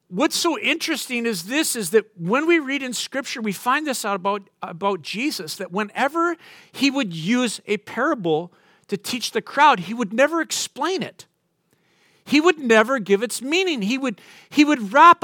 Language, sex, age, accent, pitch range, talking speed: English, male, 50-69, American, 185-270 Hz, 175 wpm